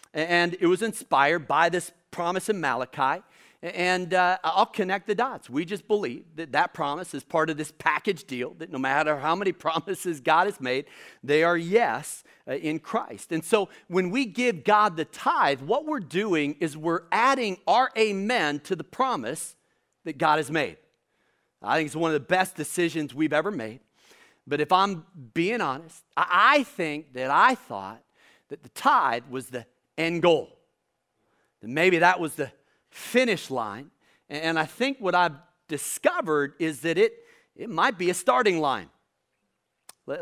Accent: American